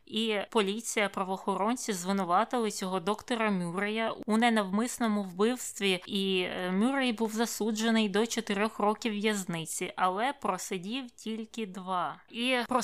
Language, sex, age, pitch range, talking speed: Ukrainian, female, 20-39, 195-225 Hz, 110 wpm